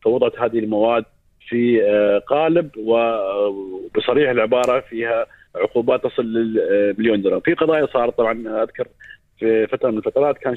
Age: 40-59